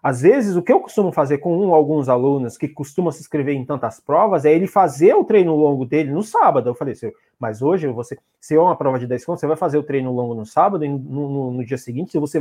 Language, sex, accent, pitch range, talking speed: Portuguese, male, Brazilian, 145-210 Hz, 255 wpm